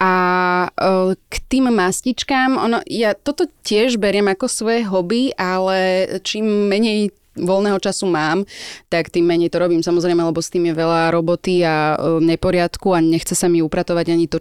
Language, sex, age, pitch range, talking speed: Slovak, female, 20-39, 175-205 Hz, 160 wpm